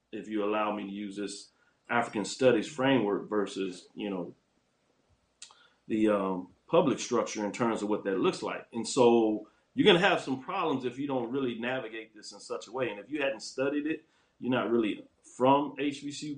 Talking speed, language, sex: 195 wpm, English, male